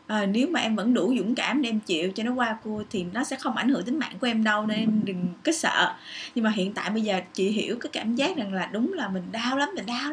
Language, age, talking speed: Vietnamese, 20-39, 300 wpm